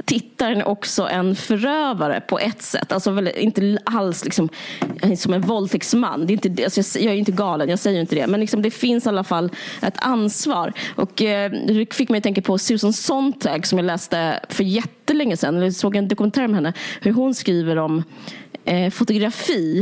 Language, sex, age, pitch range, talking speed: Swedish, female, 20-39, 175-220 Hz, 195 wpm